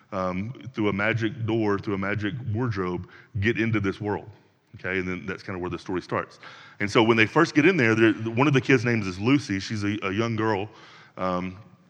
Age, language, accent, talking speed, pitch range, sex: 30-49, English, American, 220 wpm, 100-135 Hz, male